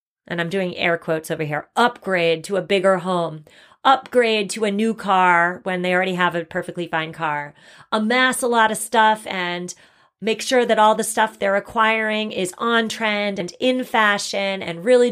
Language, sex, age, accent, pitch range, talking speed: English, female, 30-49, American, 185-245 Hz, 185 wpm